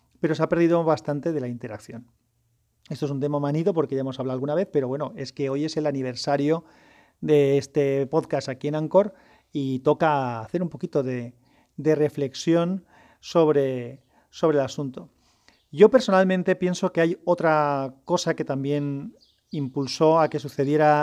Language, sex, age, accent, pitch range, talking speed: Spanish, male, 40-59, Spanish, 140-170 Hz, 165 wpm